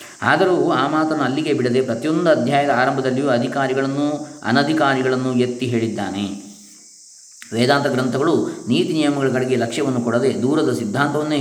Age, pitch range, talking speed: 20-39, 115-135 Hz, 105 wpm